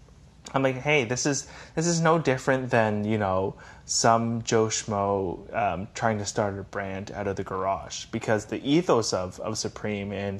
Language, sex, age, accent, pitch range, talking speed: English, male, 20-39, American, 105-130 Hz, 185 wpm